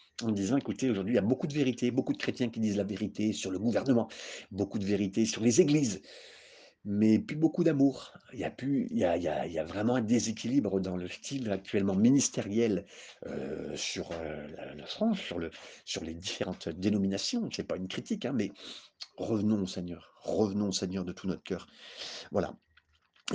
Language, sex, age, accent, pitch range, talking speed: French, male, 50-69, French, 95-140 Hz, 180 wpm